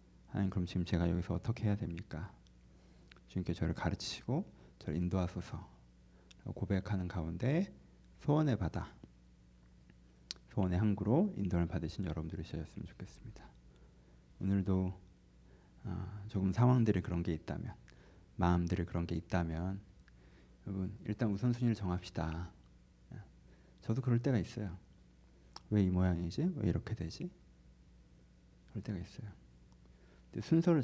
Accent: native